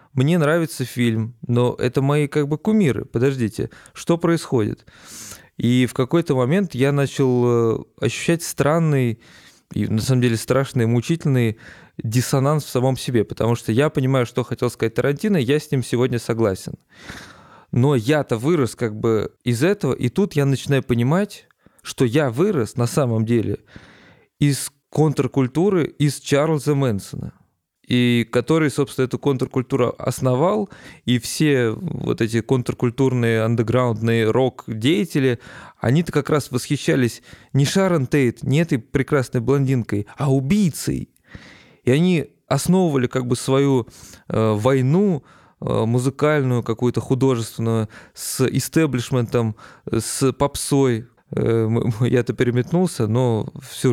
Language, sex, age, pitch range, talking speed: Russian, male, 20-39, 120-145 Hz, 125 wpm